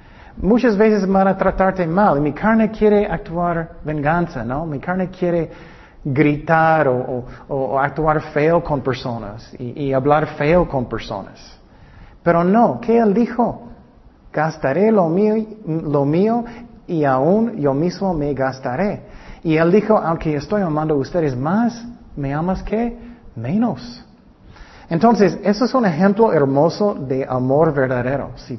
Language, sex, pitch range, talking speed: Spanish, male, 140-195 Hz, 145 wpm